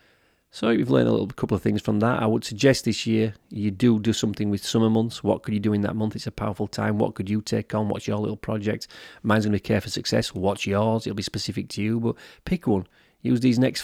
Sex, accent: male, British